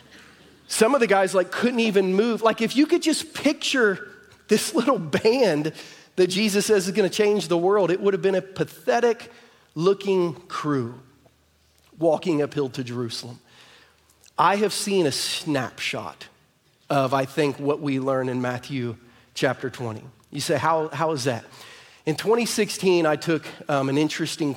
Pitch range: 145-195 Hz